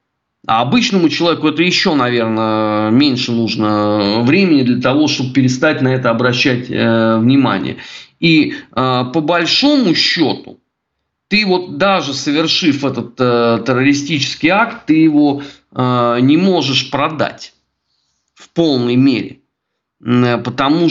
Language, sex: Russian, male